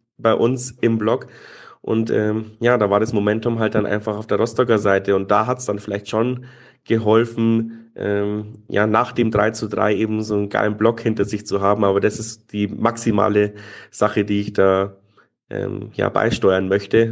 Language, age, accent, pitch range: German, 30-49, German, 105-120 Hz